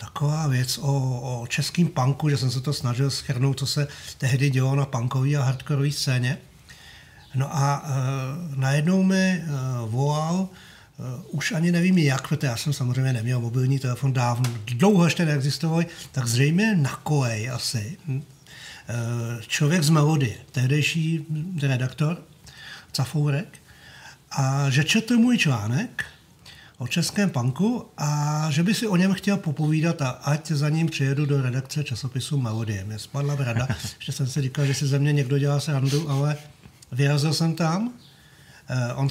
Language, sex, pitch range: Czech, male, 130-160 Hz